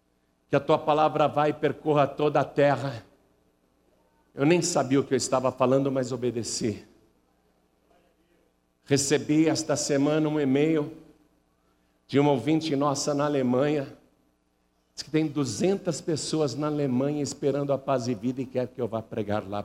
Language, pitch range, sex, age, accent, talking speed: Portuguese, 110-155 Hz, male, 60-79, Brazilian, 155 wpm